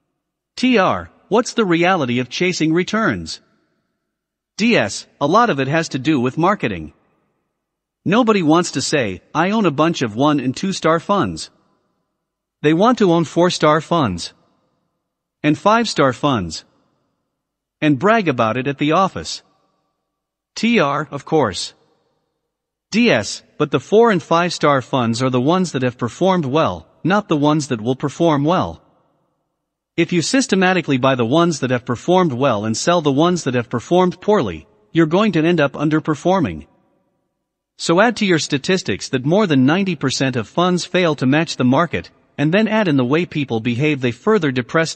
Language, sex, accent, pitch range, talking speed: English, male, American, 135-180 Hz, 160 wpm